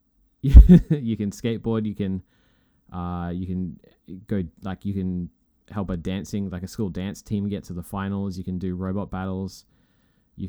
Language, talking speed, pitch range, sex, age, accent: English, 170 wpm, 90-100 Hz, male, 20-39, Australian